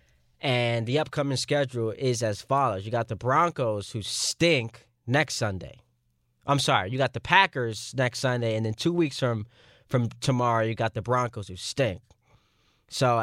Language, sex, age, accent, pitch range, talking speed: English, male, 20-39, American, 115-150 Hz, 170 wpm